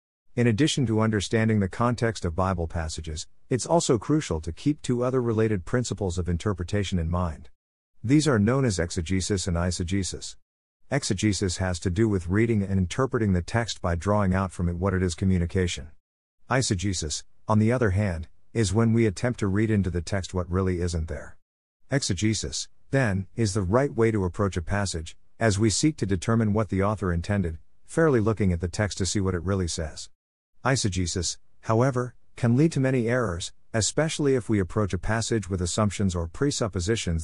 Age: 50-69